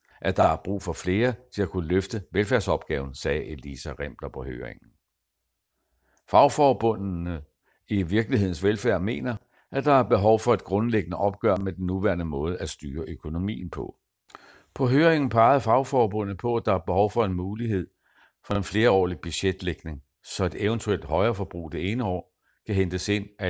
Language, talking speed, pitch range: Danish, 165 wpm, 85-110 Hz